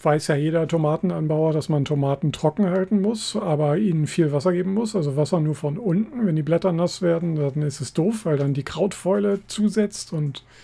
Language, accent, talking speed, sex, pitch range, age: German, German, 205 wpm, male, 145-180 Hz, 40-59